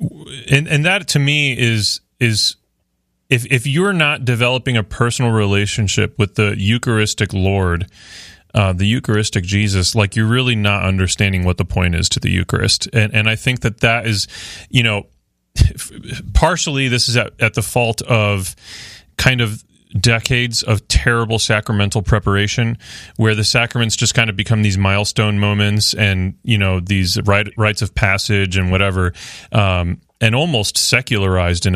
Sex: male